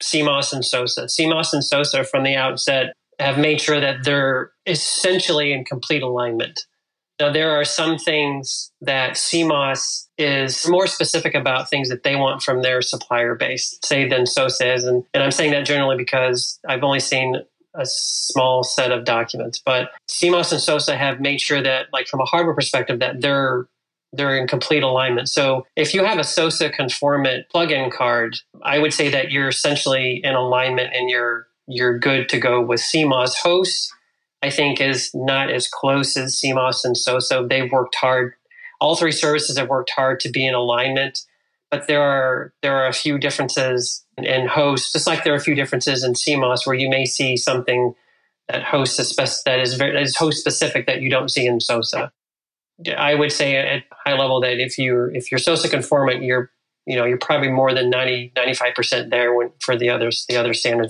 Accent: American